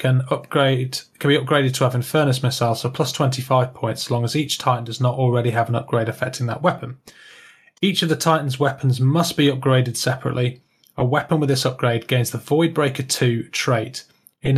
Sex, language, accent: male, English, British